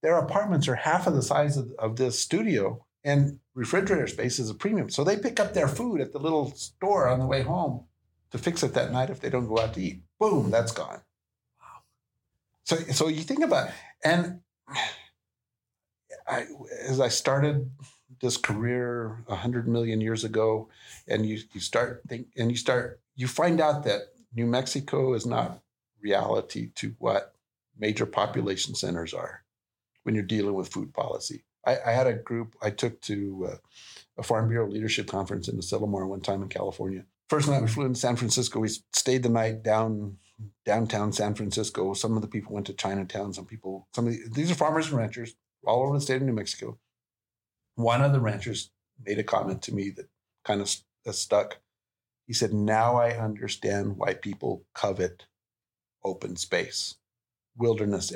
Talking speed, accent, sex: 185 wpm, American, male